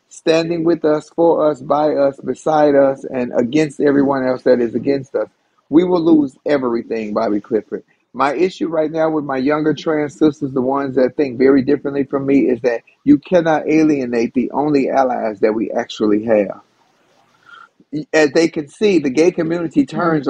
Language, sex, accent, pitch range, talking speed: English, male, American, 135-180 Hz, 175 wpm